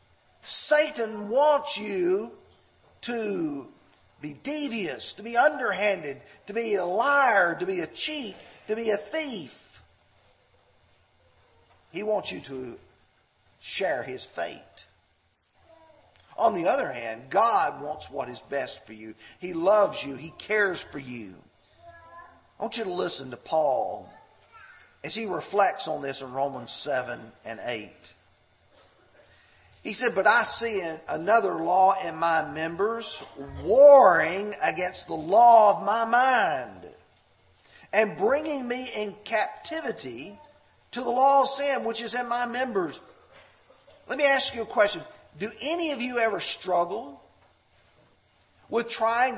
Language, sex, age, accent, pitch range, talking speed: English, male, 50-69, American, 170-260 Hz, 130 wpm